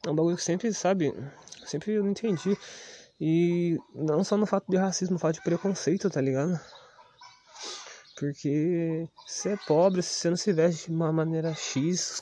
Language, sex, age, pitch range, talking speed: Portuguese, male, 20-39, 120-155 Hz, 180 wpm